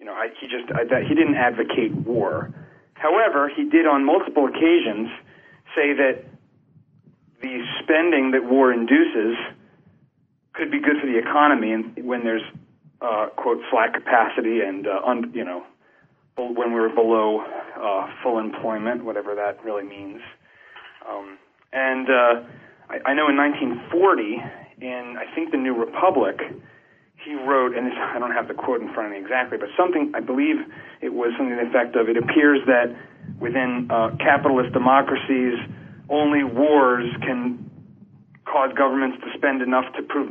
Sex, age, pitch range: male, 40-59, 120-150 Hz